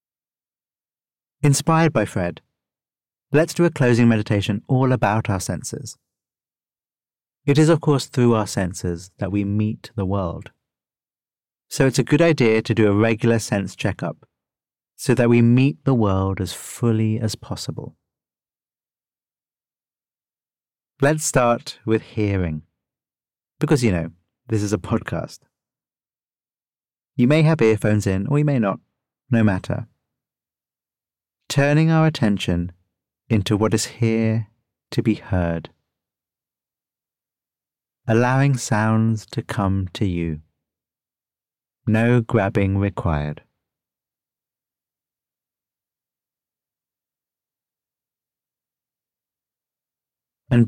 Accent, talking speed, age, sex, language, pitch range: British, 105 wpm, 30-49, male, English, 100-130 Hz